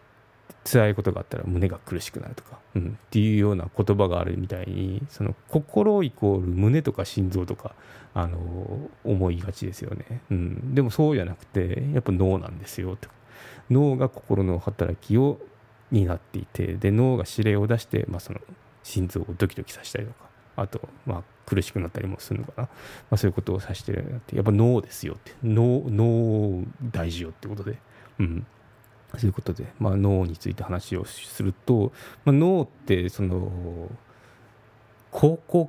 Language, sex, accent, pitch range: Japanese, male, native, 95-125 Hz